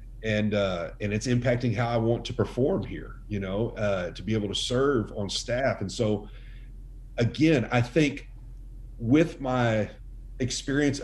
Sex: male